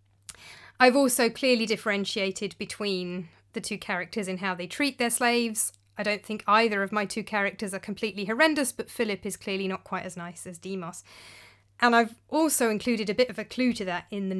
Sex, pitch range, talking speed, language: female, 190-235 Hz, 200 wpm, English